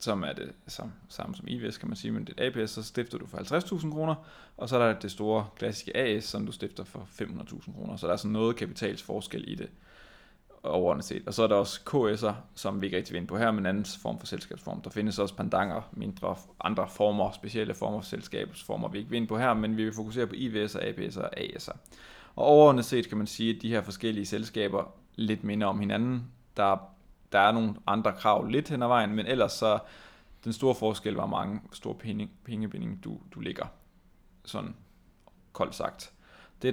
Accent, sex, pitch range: native, male, 105-120 Hz